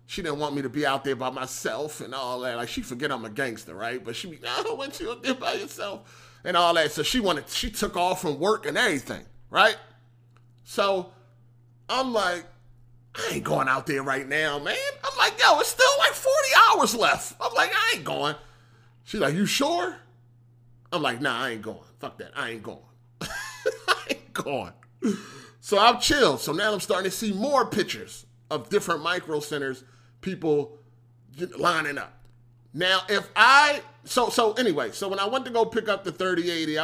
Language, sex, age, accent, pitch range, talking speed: English, male, 30-49, American, 120-185 Hz, 195 wpm